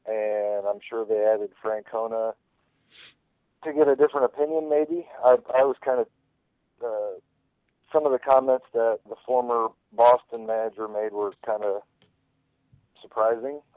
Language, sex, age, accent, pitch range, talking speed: English, male, 40-59, American, 105-135 Hz, 140 wpm